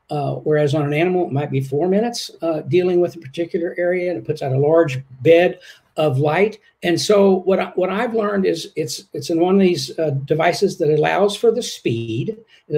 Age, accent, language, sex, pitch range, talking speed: 60-79, American, English, male, 150-195 Hz, 220 wpm